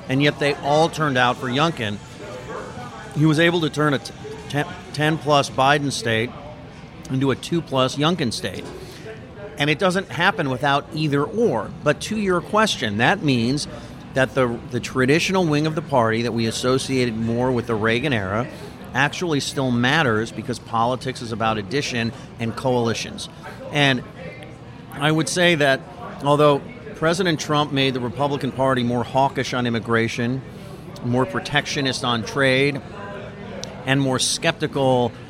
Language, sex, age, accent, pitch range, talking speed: English, male, 40-59, American, 120-145 Hz, 145 wpm